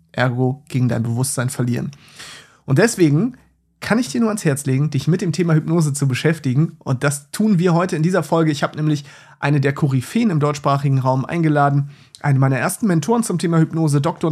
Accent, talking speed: German, 195 wpm